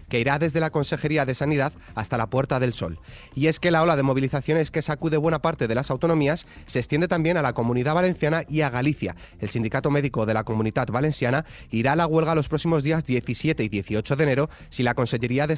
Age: 30-49